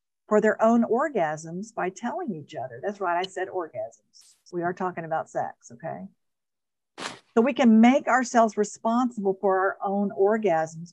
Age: 50-69